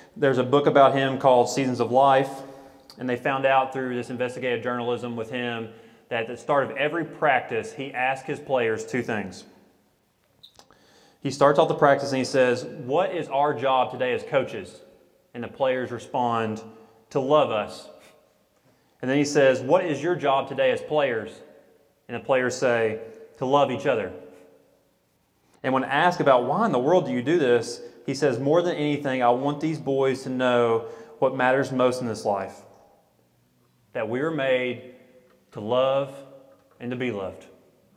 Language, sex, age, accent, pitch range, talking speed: English, male, 30-49, American, 110-135 Hz, 175 wpm